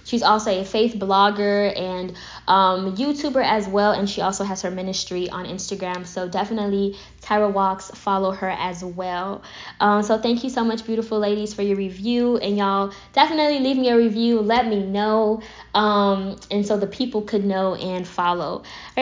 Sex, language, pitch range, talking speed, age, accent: female, English, 195-225 Hz, 180 wpm, 10-29, American